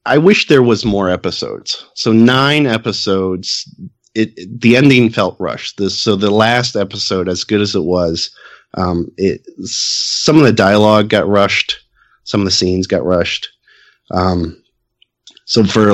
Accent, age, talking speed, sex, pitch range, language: American, 30-49, 160 wpm, male, 95-120 Hz, English